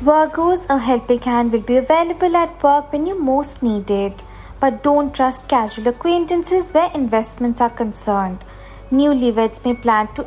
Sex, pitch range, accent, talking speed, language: female, 220-315 Hz, Indian, 150 wpm, English